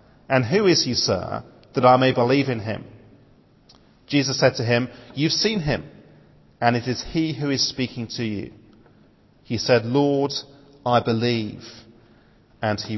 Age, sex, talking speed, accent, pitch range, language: 40-59, male, 155 wpm, British, 120-150 Hz, English